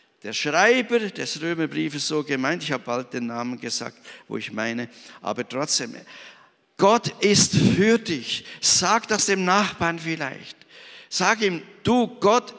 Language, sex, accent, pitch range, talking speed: German, male, German, 195-245 Hz, 145 wpm